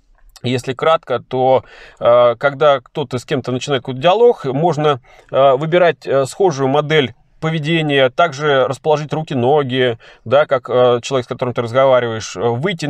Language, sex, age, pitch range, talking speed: Russian, male, 20-39, 135-170 Hz, 110 wpm